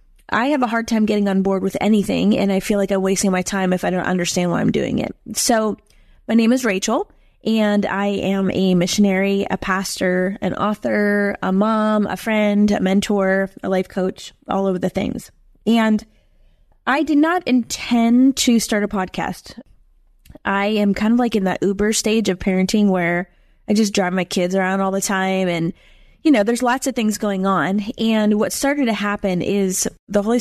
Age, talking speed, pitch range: 20-39, 195 wpm, 185-215 Hz